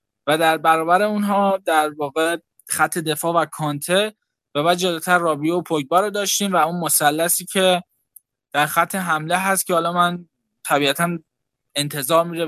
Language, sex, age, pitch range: Persian, male, 10-29, 150-190 Hz